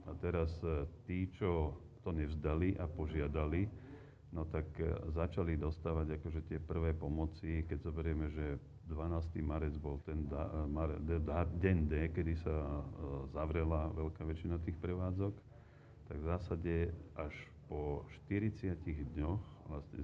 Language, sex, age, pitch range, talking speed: Slovak, male, 40-59, 75-90 Hz, 130 wpm